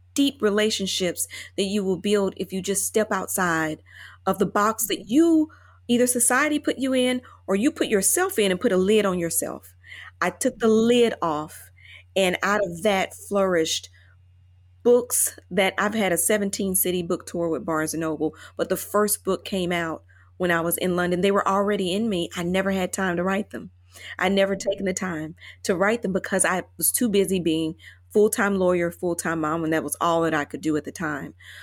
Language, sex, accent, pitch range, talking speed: English, female, American, 160-210 Hz, 205 wpm